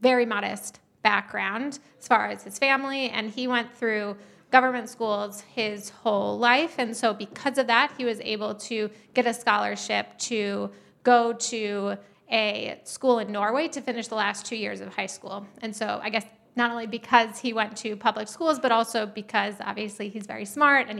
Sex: female